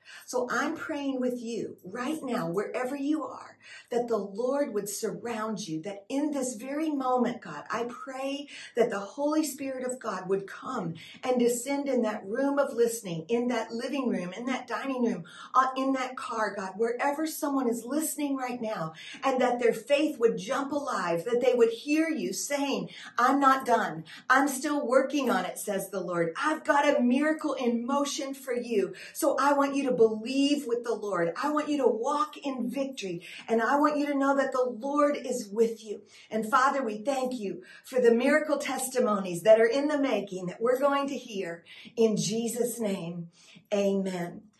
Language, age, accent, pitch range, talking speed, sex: English, 50-69, American, 215-275 Hz, 190 wpm, female